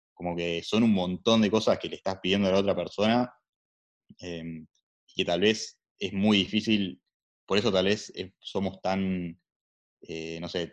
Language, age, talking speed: Spanish, 20-39, 180 wpm